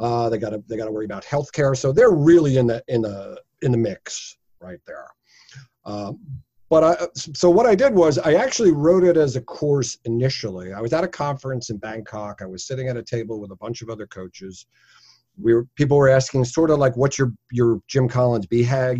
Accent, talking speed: American, 225 wpm